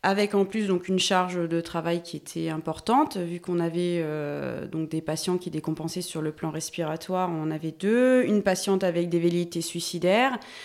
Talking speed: 190 wpm